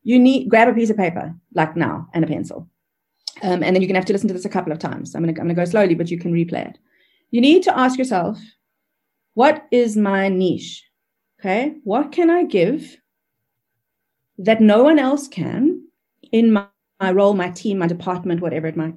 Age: 30-49